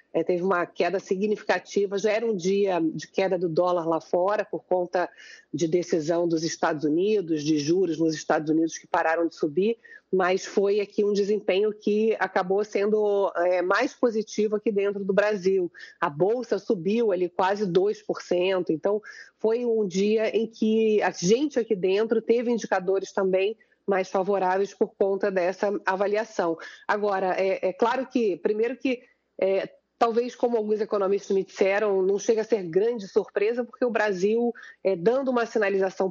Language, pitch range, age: Portuguese, 185-225 Hz, 40-59